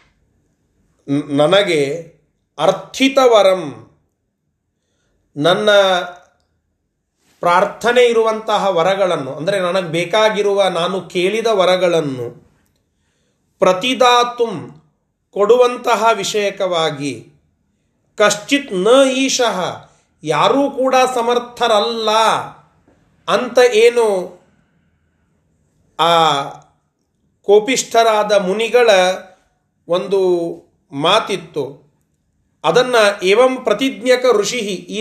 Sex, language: male, Kannada